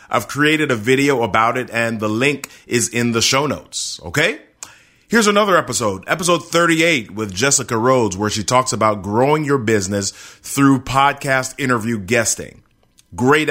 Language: English